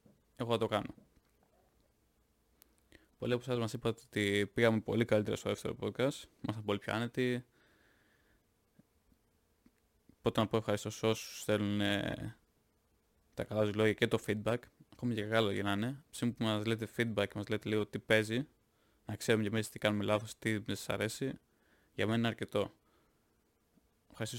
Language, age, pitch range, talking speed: Greek, 20-39, 105-115 Hz, 160 wpm